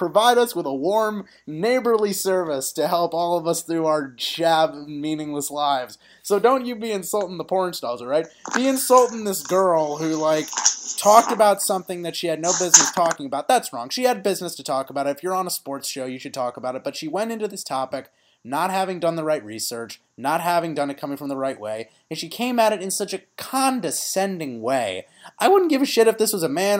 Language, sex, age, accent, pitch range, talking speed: English, male, 30-49, American, 150-215 Hz, 235 wpm